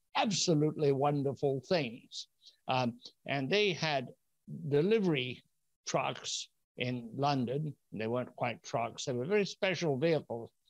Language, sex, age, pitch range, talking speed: English, male, 60-79, 130-165 Hz, 110 wpm